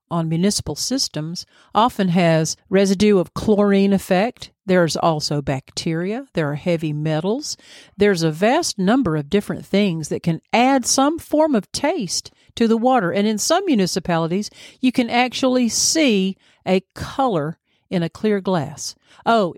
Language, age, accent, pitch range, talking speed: English, 50-69, American, 170-255 Hz, 145 wpm